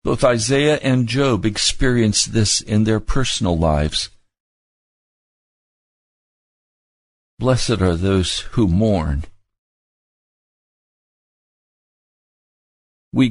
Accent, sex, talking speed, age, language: American, male, 70 wpm, 60-79, English